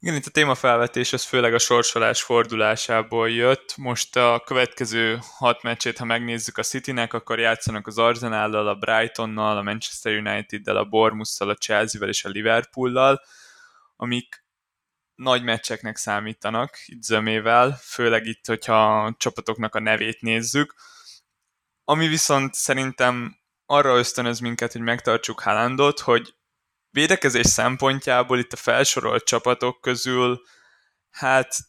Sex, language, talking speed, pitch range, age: male, Hungarian, 125 wpm, 110-125 Hz, 20-39